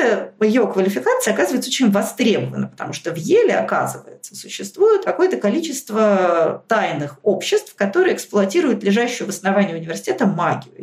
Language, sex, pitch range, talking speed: Russian, female, 175-235 Hz, 120 wpm